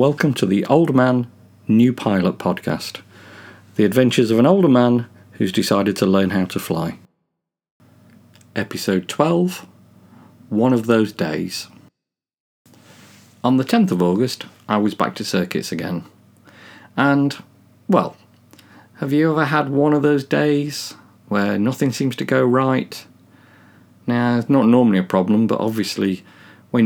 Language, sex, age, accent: English, male, 40-59, British